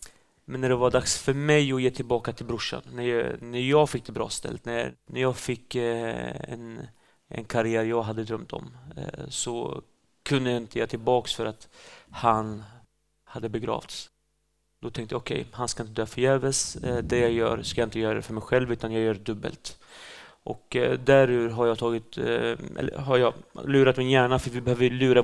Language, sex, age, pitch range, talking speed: Swedish, male, 30-49, 115-130 Hz, 190 wpm